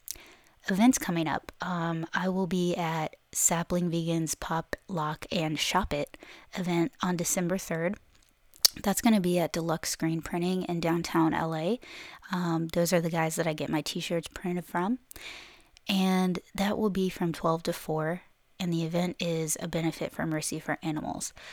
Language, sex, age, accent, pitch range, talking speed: English, female, 20-39, American, 165-185 Hz, 165 wpm